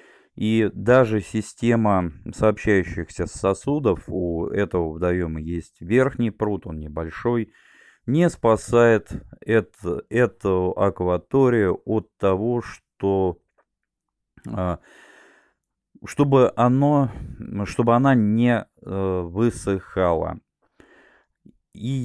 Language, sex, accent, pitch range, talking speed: Russian, male, native, 90-115 Hz, 70 wpm